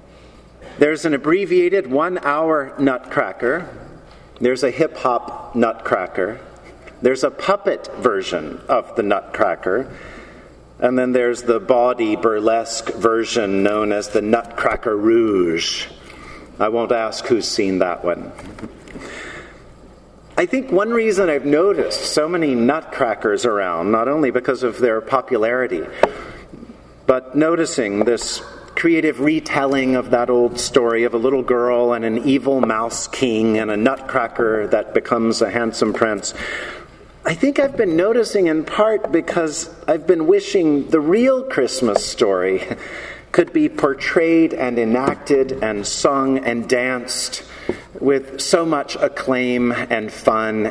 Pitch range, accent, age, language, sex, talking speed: 120-185 Hz, American, 50-69, English, male, 125 wpm